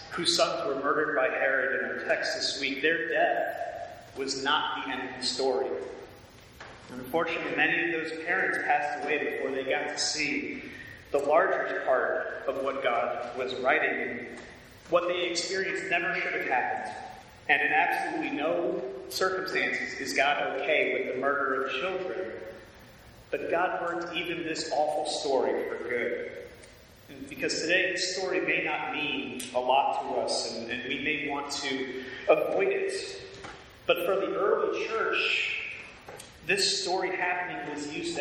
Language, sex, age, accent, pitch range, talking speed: English, male, 30-49, American, 140-195 Hz, 155 wpm